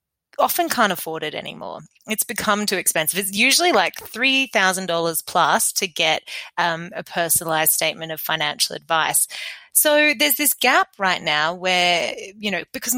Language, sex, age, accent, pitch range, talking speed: English, female, 20-39, Australian, 170-240 Hz, 155 wpm